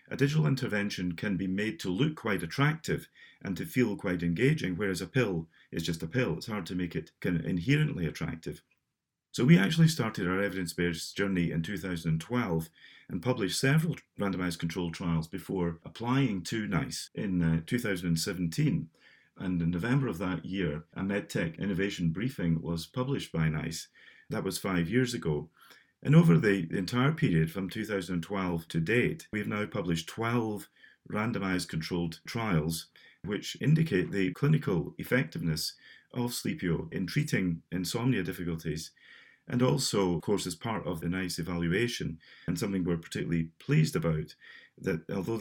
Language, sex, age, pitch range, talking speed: English, male, 40-59, 85-125 Hz, 150 wpm